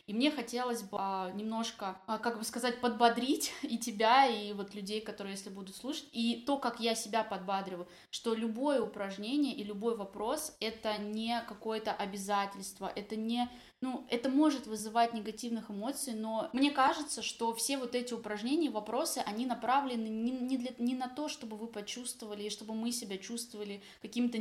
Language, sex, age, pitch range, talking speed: Russian, female, 20-39, 210-245 Hz, 160 wpm